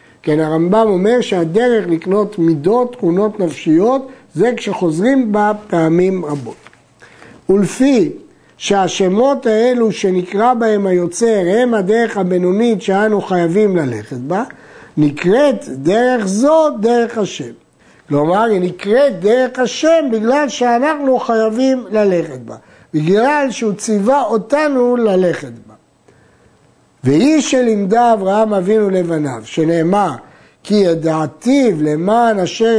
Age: 60-79